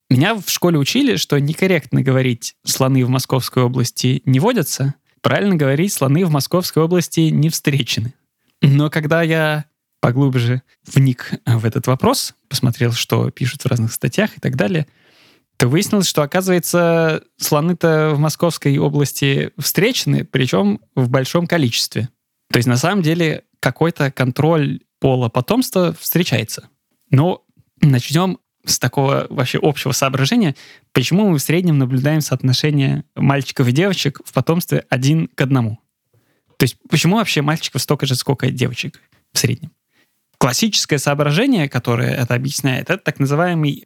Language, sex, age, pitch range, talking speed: Russian, male, 20-39, 130-165 Hz, 140 wpm